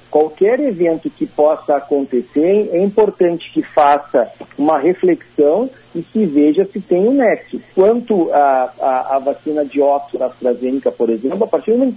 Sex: male